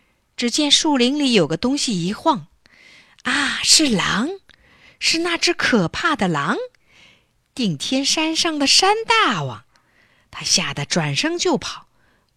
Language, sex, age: Chinese, female, 50-69